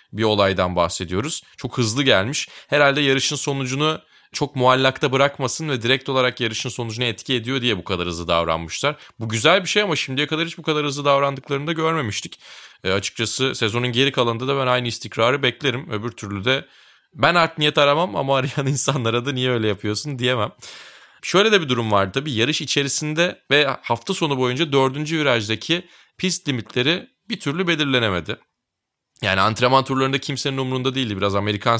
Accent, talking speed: native, 170 wpm